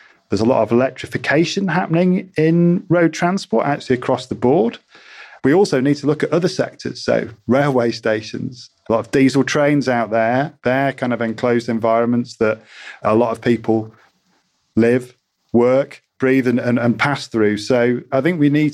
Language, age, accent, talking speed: English, 40-59, British, 175 wpm